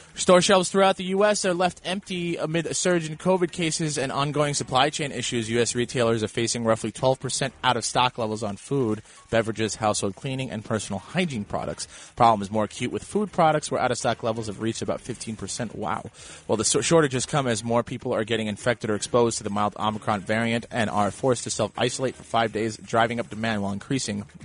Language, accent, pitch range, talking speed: English, American, 110-155 Hz, 200 wpm